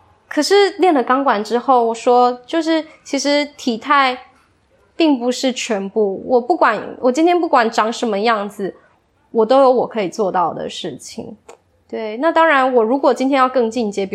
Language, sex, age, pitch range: English, female, 20-39, 205-265 Hz